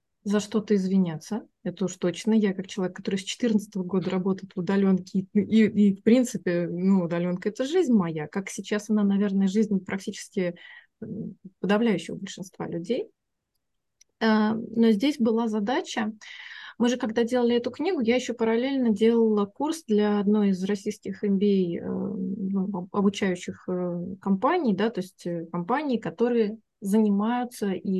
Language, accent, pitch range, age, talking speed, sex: Russian, native, 190-230 Hz, 20-39, 135 wpm, female